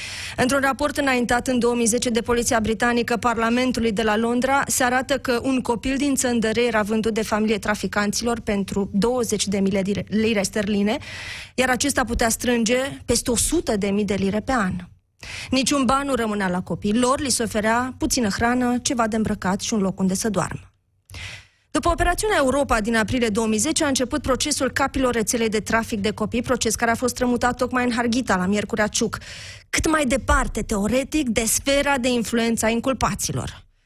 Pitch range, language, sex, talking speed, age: 215-260 Hz, Romanian, female, 175 wpm, 20-39